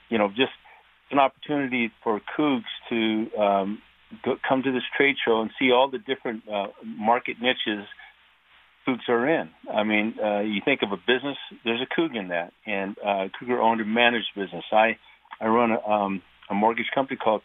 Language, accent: English, American